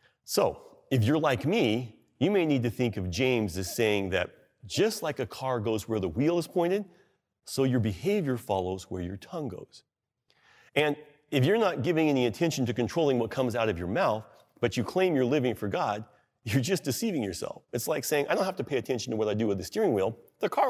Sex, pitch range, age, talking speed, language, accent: male, 110-145 Hz, 40-59, 225 wpm, English, American